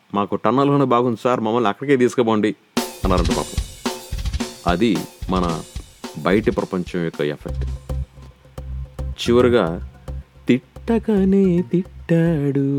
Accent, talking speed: native, 85 wpm